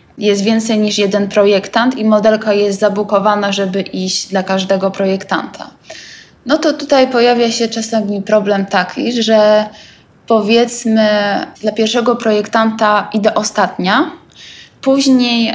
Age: 20-39